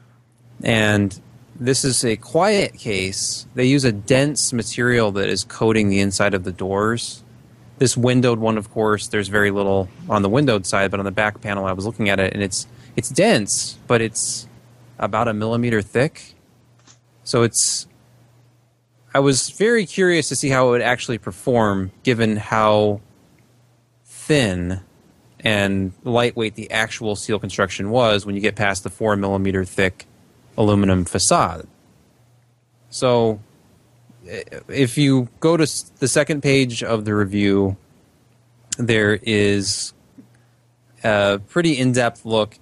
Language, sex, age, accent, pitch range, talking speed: English, male, 20-39, American, 105-125 Hz, 140 wpm